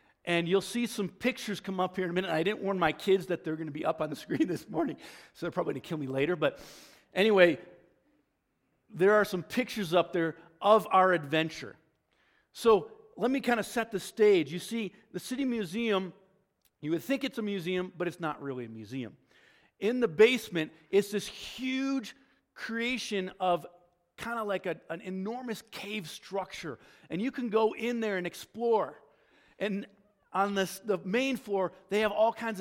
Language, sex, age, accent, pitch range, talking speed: English, male, 50-69, American, 180-220 Hz, 190 wpm